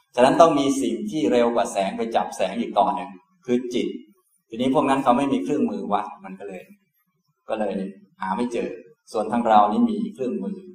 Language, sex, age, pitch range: Thai, male, 20-39, 120-190 Hz